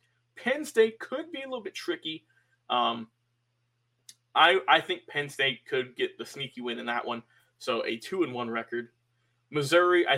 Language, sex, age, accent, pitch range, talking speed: English, male, 20-39, American, 120-180 Hz, 165 wpm